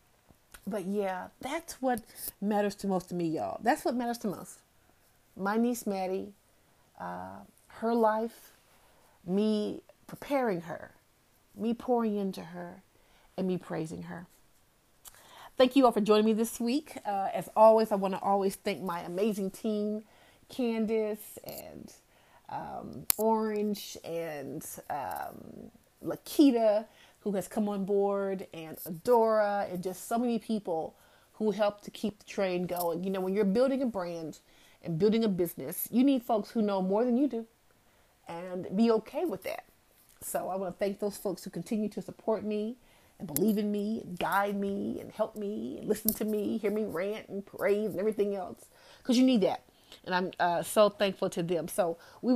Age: 30-49